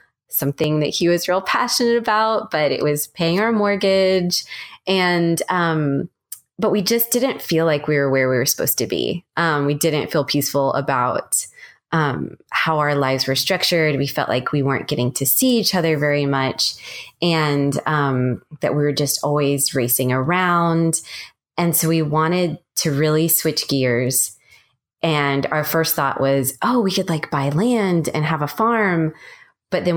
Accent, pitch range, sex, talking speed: American, 140-180 Hz, female, 175 wpm